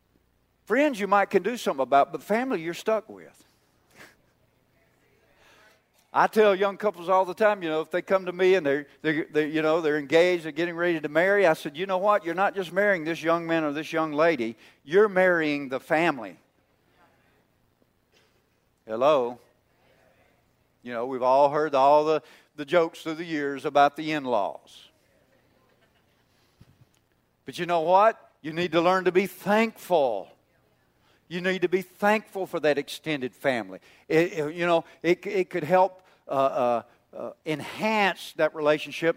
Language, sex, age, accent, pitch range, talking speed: English, male, 50-69, American, 150-185 Hz, 165 wpm